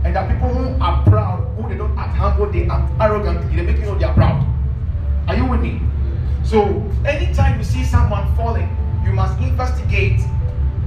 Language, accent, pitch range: English, Nigerian, 75-95 Hz